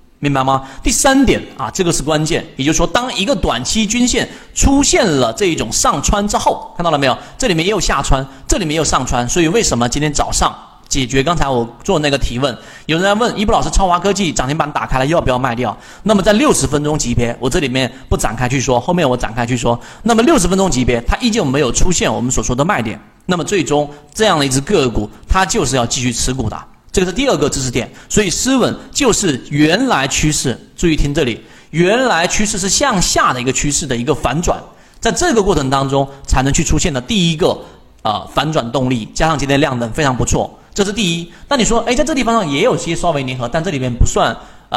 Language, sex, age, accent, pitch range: Chinese, male, 30-49, native, 130-190 Hz